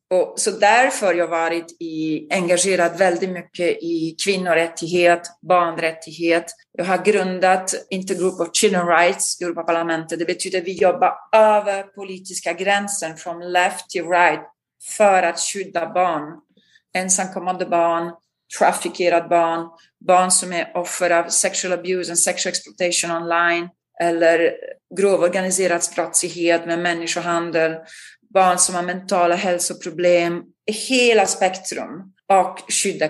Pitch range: 165-185 Hz